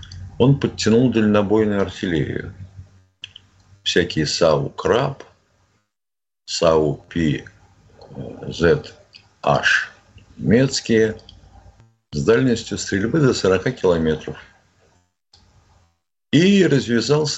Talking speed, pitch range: 75 wpm, 90-110 Hz